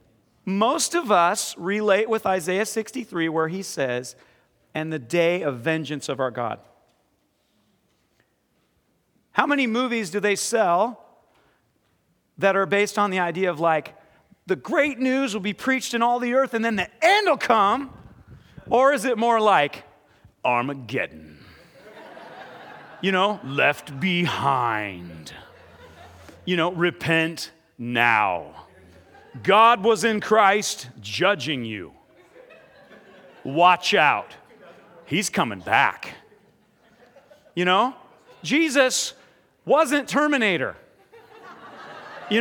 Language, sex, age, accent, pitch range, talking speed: English, male, 40-59, American, 155-245 Hz, 110 wpm